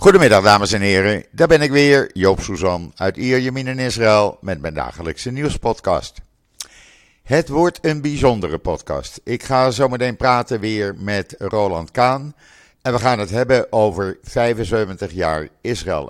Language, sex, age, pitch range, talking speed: Dutch, male, 50-69, 95-130 Hz, 150 wpm